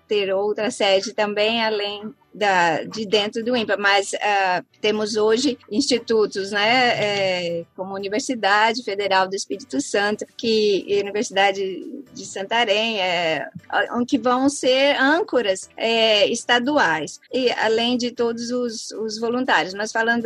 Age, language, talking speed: 20-39, Portuguese, 130 wpm